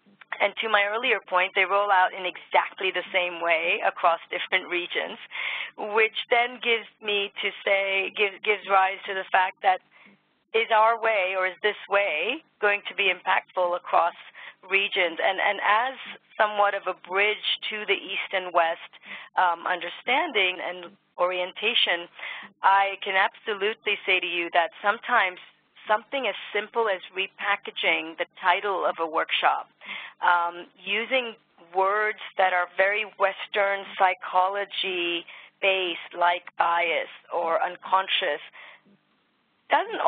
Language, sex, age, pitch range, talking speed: English, female, 40-59, 185-210 Hz, 135 wpm